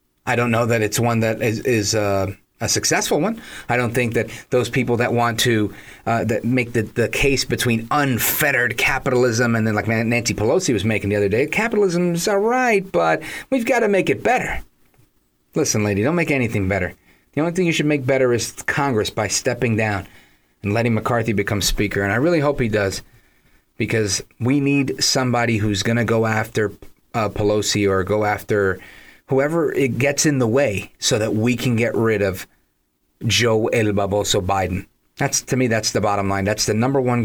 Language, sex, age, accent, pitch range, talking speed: English, male, 30-49, American, 105-135 Hz, 195 wpm